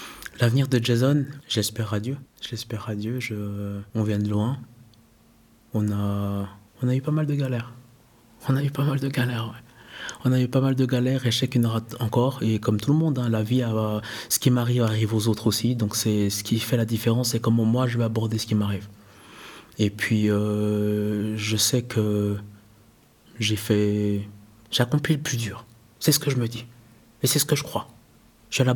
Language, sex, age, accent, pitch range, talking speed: French, male, 20-39, French, 105-120 Hz, 215 wpm